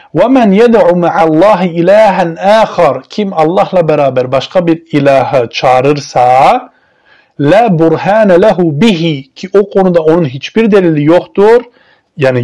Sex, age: male, 40-59